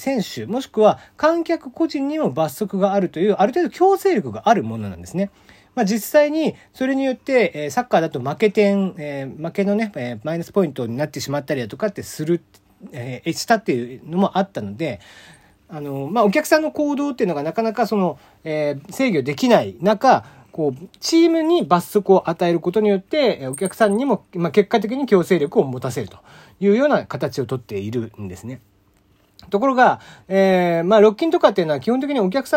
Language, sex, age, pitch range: Japanese, male, 40-59, 145-235 Hz